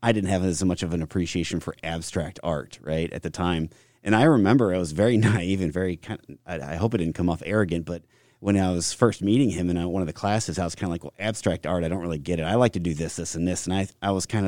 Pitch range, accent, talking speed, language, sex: 85-105 Hz, American, 300 wpm, English, male